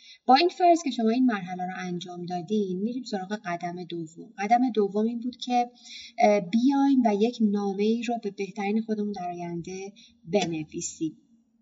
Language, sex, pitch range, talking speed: Persian, female, 195-235 Hz, 155 wpm